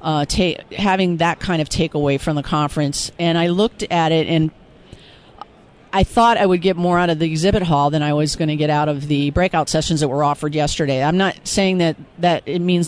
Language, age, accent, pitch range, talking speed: English, 50-69, American, 155-185 Hz, 230 wpm